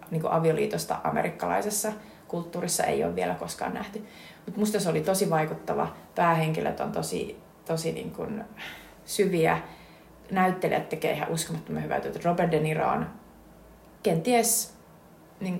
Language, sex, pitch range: Finnish, female, 155-205 Hz